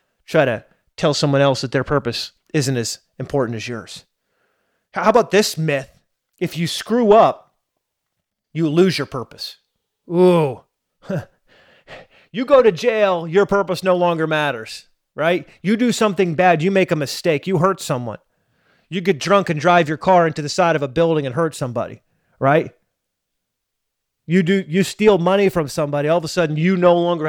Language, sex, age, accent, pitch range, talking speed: English, male, 30-49, American, 150-195 Hz, 170 wpm